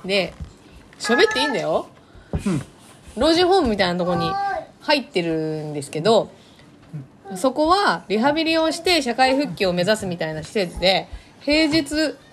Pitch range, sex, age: 170-275 Hz, female, 20-39